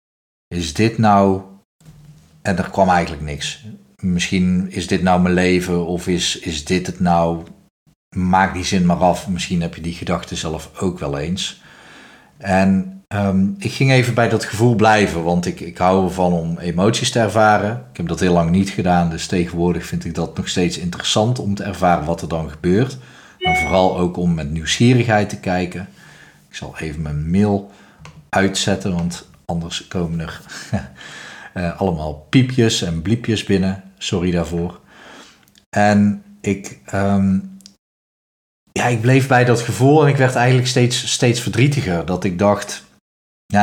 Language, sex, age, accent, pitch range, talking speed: Dutch, male, 40-59, Dutch, 90-105 Hz, 160 wpm